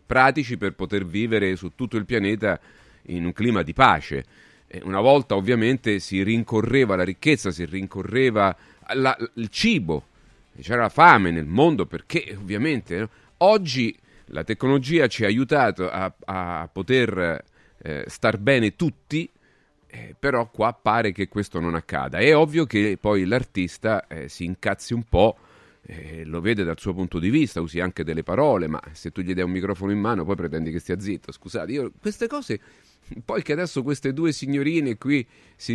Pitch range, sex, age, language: 95-135 Hz, male, 40-59, Italian